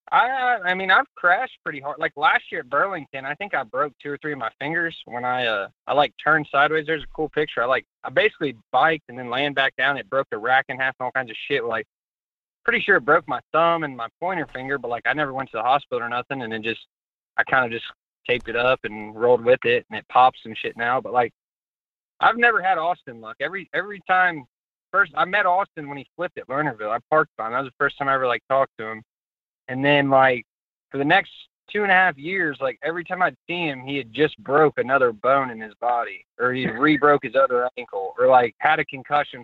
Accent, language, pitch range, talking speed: American, English, 125-160 Hz, 255 wpm